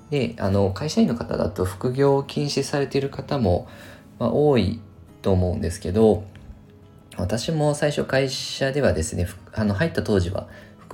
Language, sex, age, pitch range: Japanese, male, 20-39, 95-125 Hz